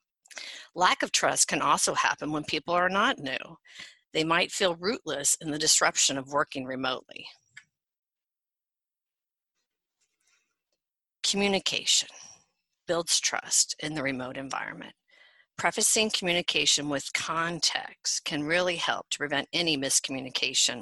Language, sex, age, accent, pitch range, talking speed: English, female, 50-69, American, 140-195 Hz, 110 wpm